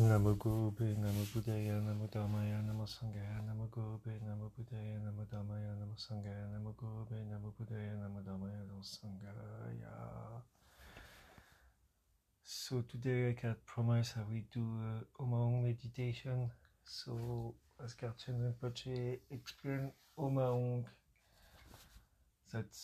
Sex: male